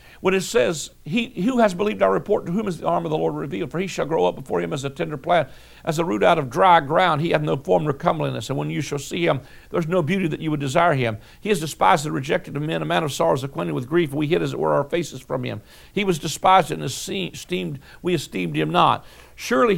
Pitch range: 135-190 Hz